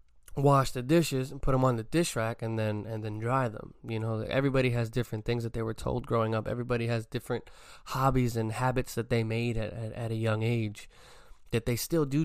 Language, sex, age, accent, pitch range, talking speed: English, male, 20-39, American, 110-125 Hz, 230 wpm